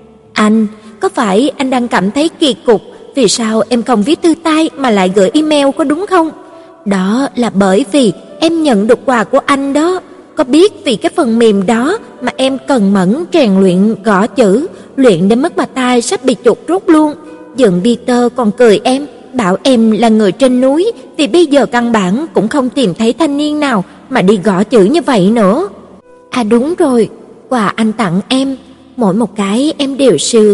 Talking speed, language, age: 200 wpm, Vietnamese, 20-39